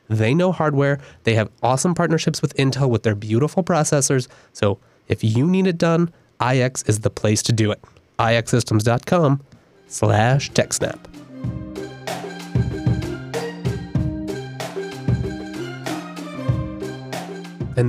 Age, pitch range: 20-39, 115-160 Hz